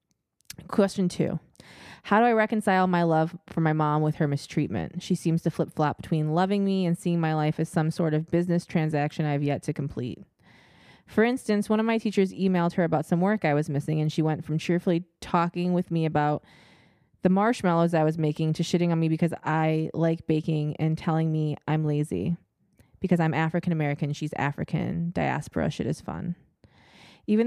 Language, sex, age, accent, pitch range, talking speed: English, female, 20-39, American, 155-180 Hz, 190 wpm